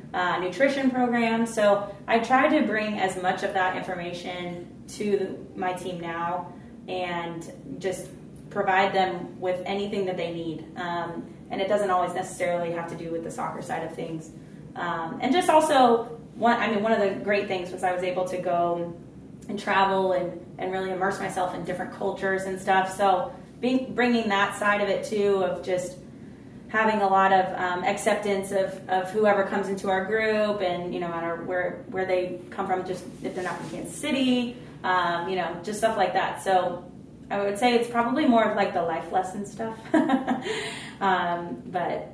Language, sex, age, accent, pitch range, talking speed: English, female, 20-39, American, 180-210 Hz, 185 wpm